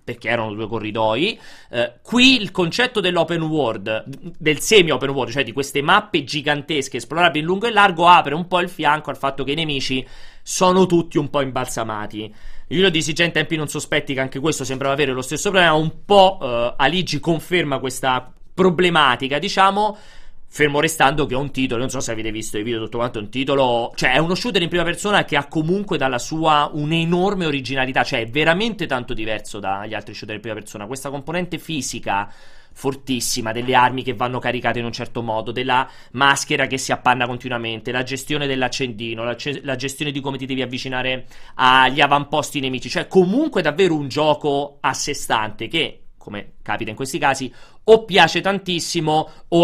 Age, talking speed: 30-49, 185 wpm